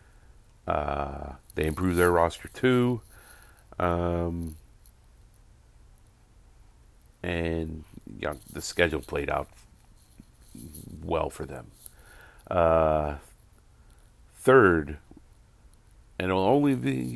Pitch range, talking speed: 75-90 Hz, 75 wpm